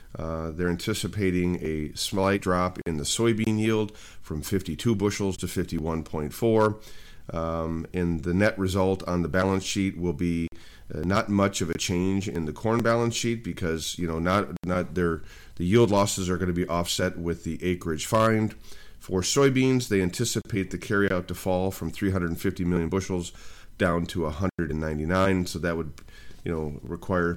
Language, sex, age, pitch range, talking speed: English, male, 40-59, 85-100 Hz, 165 wpm